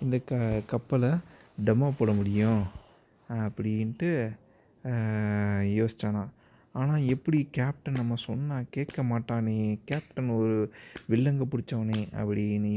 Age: 30-49